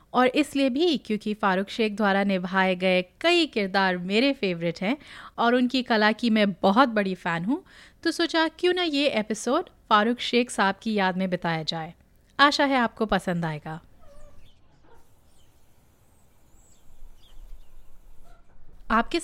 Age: 30-49